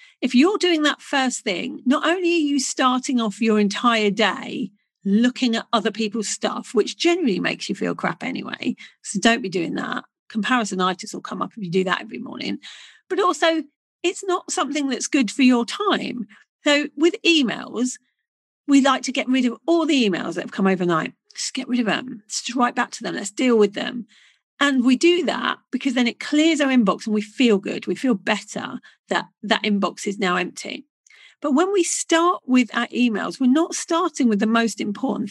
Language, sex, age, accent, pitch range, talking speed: English, female, 40-59, British, 220-295 Hz, 200 wpm